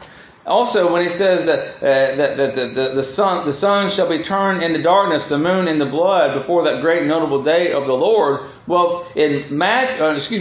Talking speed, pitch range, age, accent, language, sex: 220 wpm, 155-225 Hz, 40-59, American, English, male